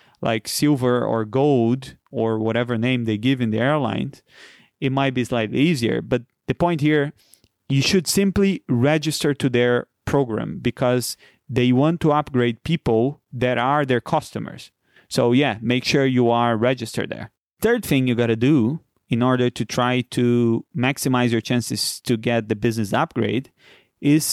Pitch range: 120-150 Hz